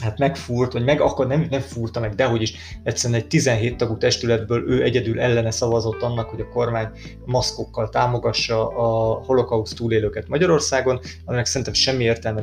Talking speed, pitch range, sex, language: 170 wpm, 110-130 Hz, male, Hungarian